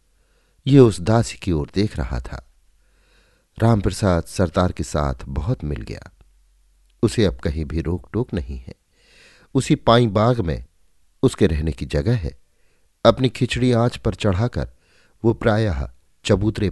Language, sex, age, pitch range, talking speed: Hindi, male, 50-69, 75-105 Hz, 145 wpm